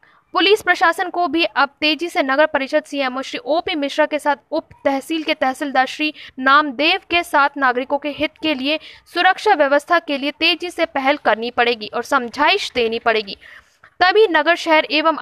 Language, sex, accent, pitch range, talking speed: Hindi, female, native, 270-320 Hz, 175 wpm